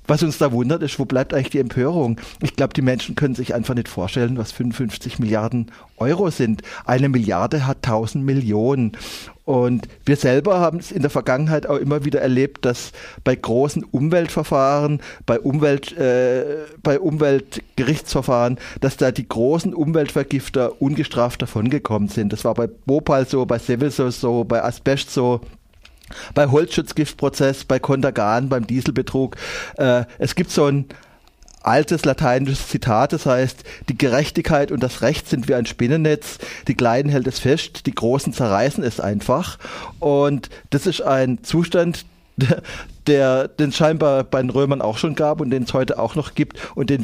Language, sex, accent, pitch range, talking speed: German, male, German, 120-145 Hz, 165 wpm